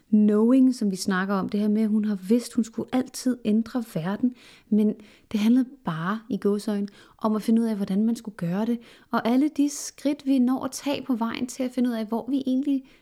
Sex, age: female, 30-49